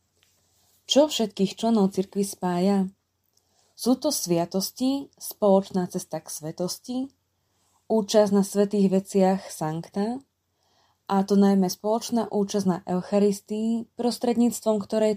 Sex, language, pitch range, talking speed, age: female, Slovak, 175-220 Hz, 105 wpm, 20-39